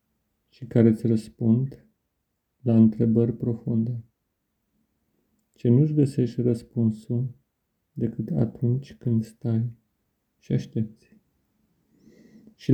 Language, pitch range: Romanian, 115-135 Hz